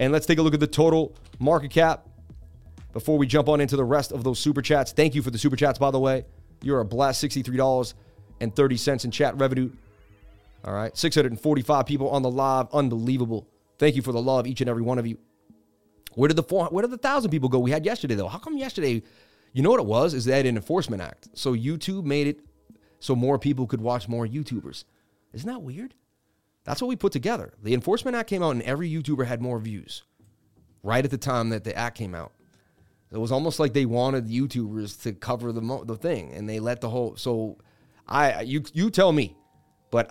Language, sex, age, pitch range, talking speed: English, male, 30-49, 115-150 Hz, 220 wpm